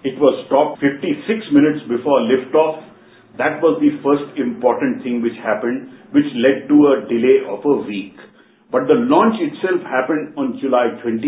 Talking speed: 160 wpm